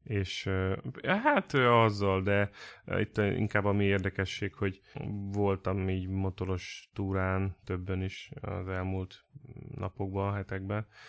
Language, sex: Hungarian, male